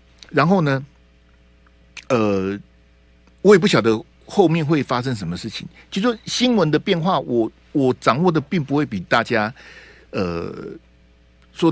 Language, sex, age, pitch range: Chinese, male, 50-69, 85-145 Hz